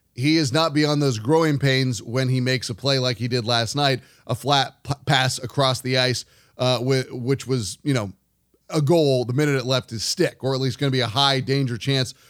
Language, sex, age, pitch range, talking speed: English, male, 20-39, 125-150 Hz, 235 wpm